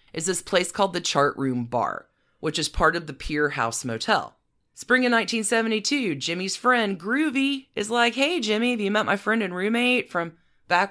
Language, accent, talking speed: English, American, 195 wpm